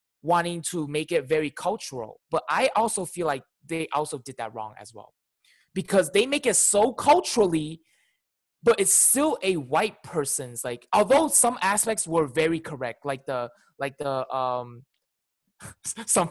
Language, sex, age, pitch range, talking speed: English, male, 20-39, 140-185 Hz, 160 wpm